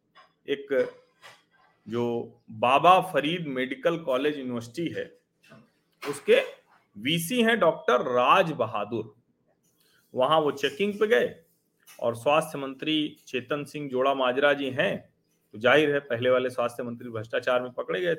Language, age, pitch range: Hindi, 40-59, 120-160 Hz